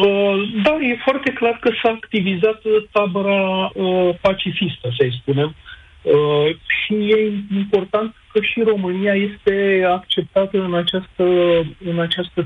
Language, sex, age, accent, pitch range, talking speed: Romanian, male, 40-59, native, 155-200 Hz, 105 wpm